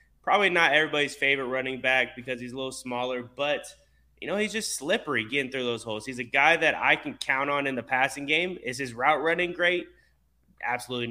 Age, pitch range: 20-39, 115-140 Hz